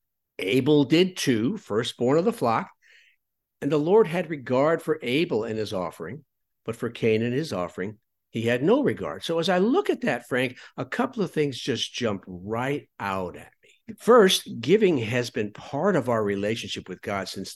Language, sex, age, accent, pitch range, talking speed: English, male, 50-69, American, 120-175 Hz, 190 wpm